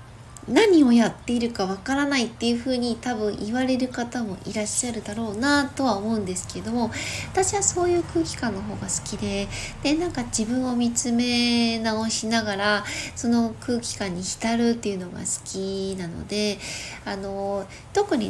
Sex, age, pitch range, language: female, 20-39, 195-265 Hz, Japanese